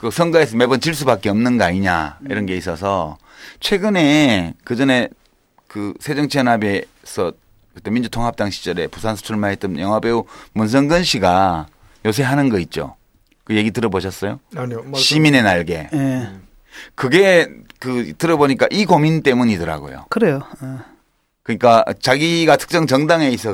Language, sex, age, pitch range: Korean, male, 30-49, 105-160 Hz